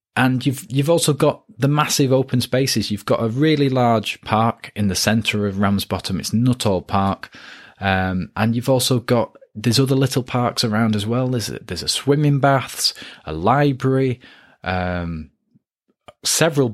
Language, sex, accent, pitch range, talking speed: English, male, British, 100-130 Hz, 160 wpm